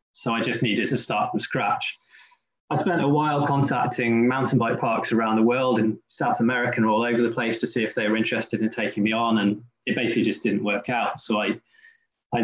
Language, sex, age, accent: English, male, 20-39, British